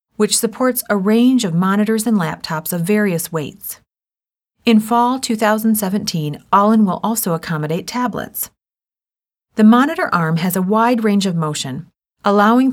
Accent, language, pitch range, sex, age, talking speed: American, English, 165-225 Hz, female, 40-59, 135 wpm